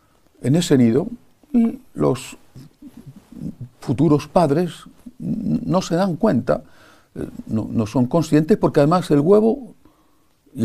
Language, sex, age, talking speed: English, male, 50-69, 105 wpm